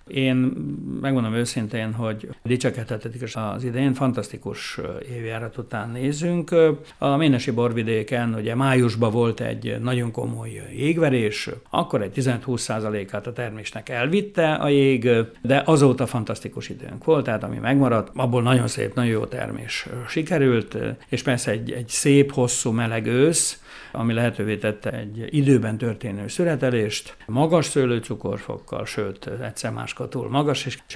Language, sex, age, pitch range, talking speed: Hungarian, male, 60-79, 110-135 Hz, 130 wpm